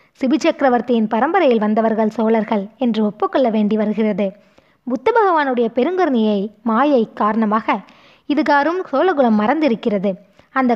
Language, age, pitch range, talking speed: Tamil, 20-39, 220-280 Hz, 100 wpm